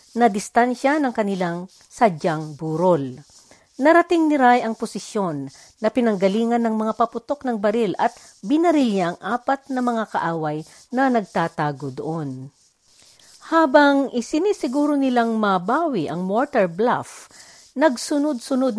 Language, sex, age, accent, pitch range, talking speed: Filipino, female, 50-69, native, 185-265 Hz, 115 wpm